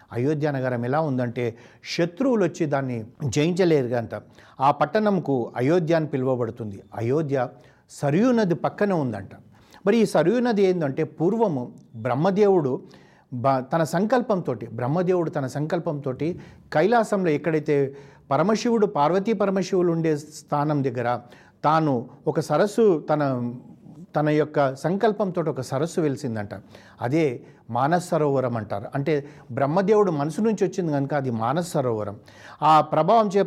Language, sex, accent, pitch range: Telugu, male, native, 125-170 Hz